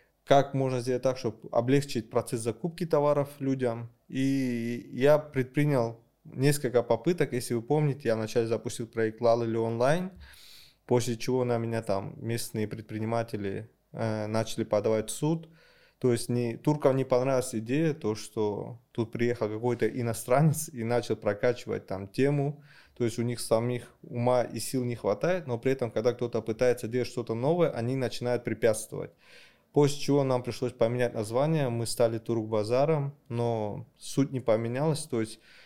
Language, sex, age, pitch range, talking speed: Russian, male, 20-39, 115-135 Hz, 155 wpm